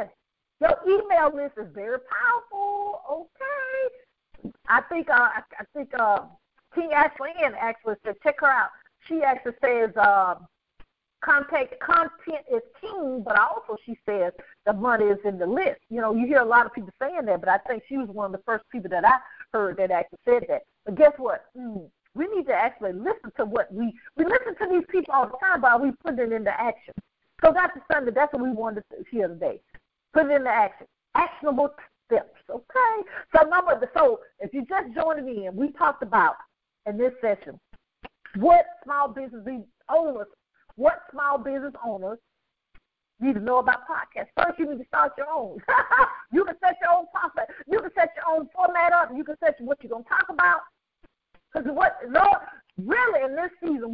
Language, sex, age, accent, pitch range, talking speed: English, female, 50-69, American, 235-340 Hz, 195 wpm